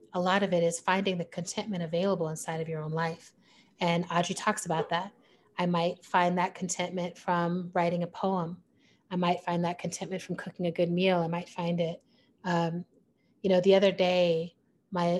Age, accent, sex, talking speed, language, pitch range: 30-49, American, female, 195 wpm, English, 170-185 Hz